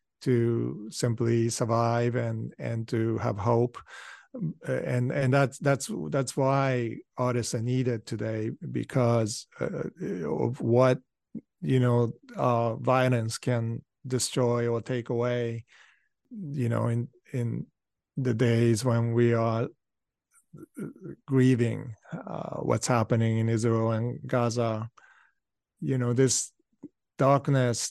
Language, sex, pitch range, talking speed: English, male, 115-135 Hz, 110 wpm